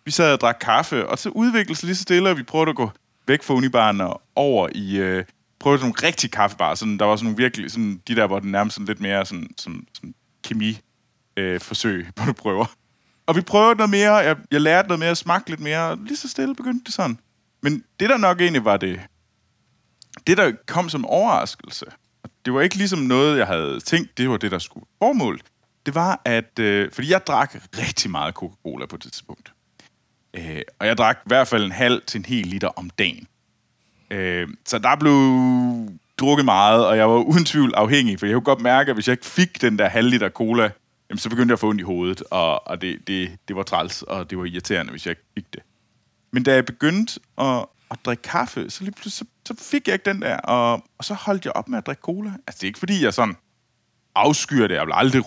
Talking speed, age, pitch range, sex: 230 wpm, 30-49, 105-165 Hz, male